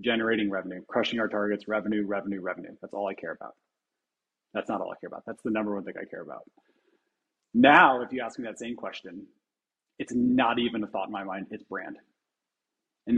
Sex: male